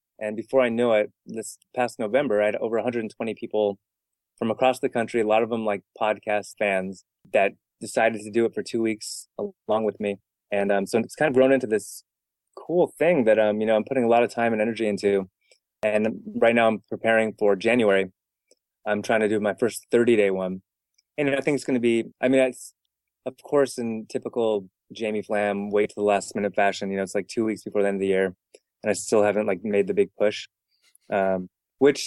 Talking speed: 225 wpm